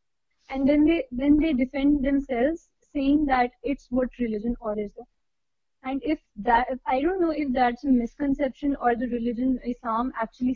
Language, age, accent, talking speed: English, 20-39, Indian, 170 wpm